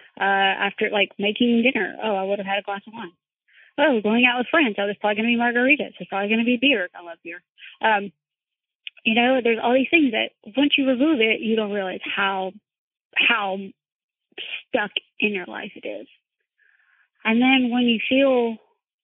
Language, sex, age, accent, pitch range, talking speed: English, female, 30-49, American, 205-260 Hz, 190 wpm